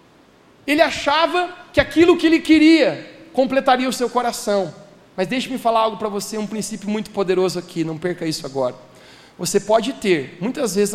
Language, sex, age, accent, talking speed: Portuguese, male, 40-59, Brazilian, 170 wpm